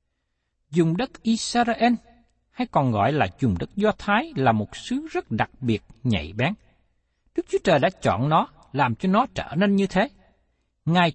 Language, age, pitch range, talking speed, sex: Vietnamese, 60-79, 155-225 Hz, 180 wpm, male